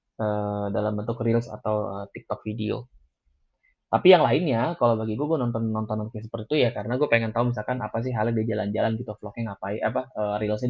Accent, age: native, 10-29